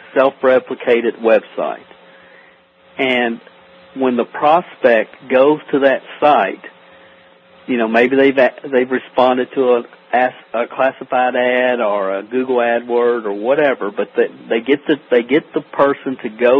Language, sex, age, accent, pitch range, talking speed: English, male, 50-69, American, 115-140 Hz, 140 wpm